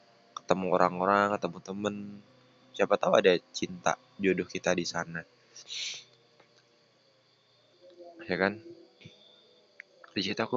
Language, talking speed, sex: Indonesian, 90 wpm, male